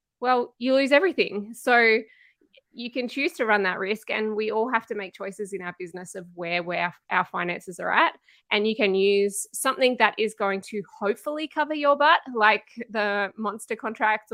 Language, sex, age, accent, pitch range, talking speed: English, female, 20-39, Australian, 185-230 Hz, 190 wpm